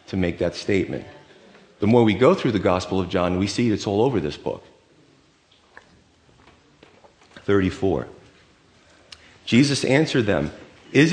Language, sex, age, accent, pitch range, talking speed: English, male, 40-59, American, 100-130 Hz, 135 wpm